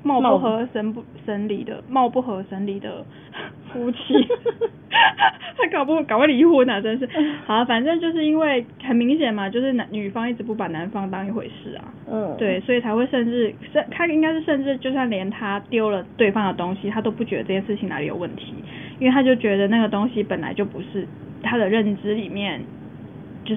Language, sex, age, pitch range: Chinese, female, 10-29, 205-250 Hz